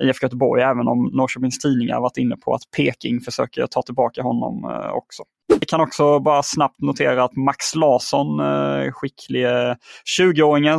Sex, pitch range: male, 120-145 Hz